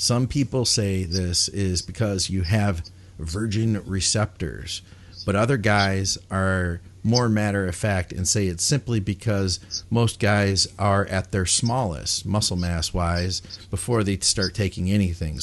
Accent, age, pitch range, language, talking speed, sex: American, 40-59, 90-110 Hz, English, 130 wpm, male